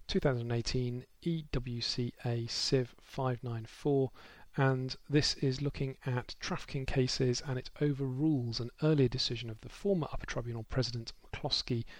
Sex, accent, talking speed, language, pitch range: male, British, 120 wpm, English, 120-135 Hz